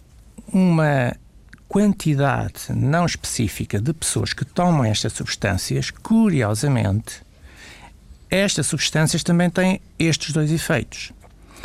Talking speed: 95 wpm